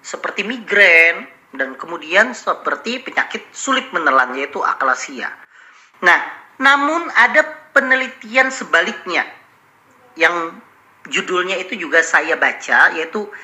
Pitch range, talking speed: 195-255 Hz, 100 wpm